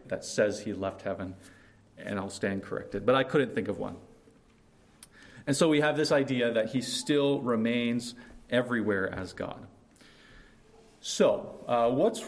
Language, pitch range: English, 115-150 Hz